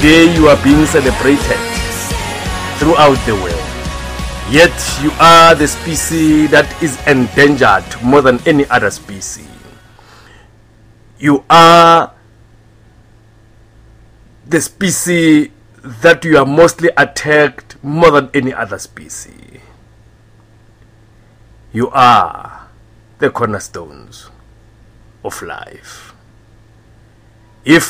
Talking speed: 90 wpm